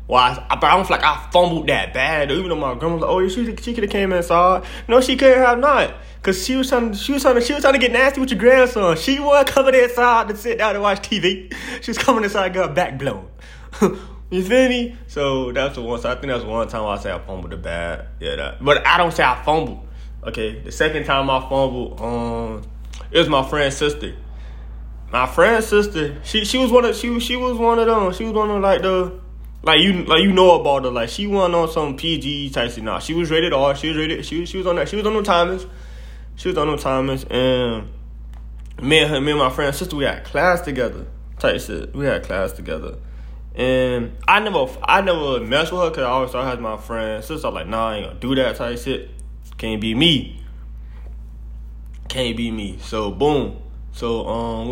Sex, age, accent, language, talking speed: male, 20-39, American, English, 240 wpm